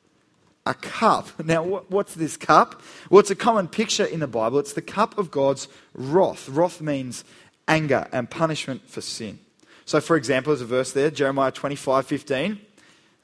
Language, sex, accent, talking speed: English, male, Australian, 170 wpm